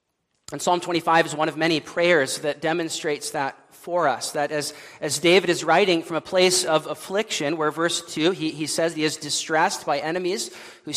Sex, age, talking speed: male, 40-59, 195 wpm